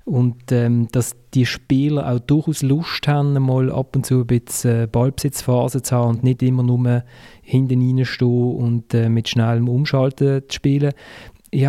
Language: German